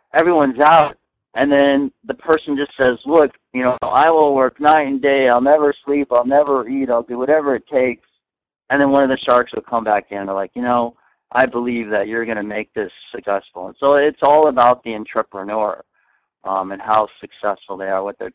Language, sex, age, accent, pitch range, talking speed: English, male, 50-69, American, 105-130 Hz, 215 wpm